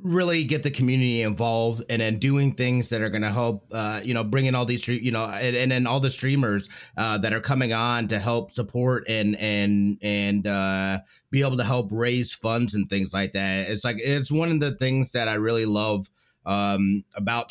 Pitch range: 100-125 Hz